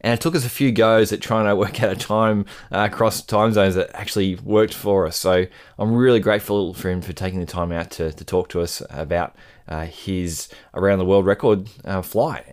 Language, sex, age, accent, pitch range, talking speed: English, male, 20-39, Australian, 95-125 Hz, 220 wpm